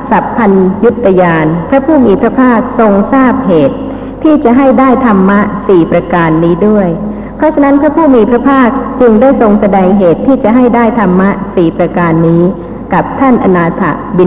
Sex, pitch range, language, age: female, 170-235 Hz, Thai, 60-79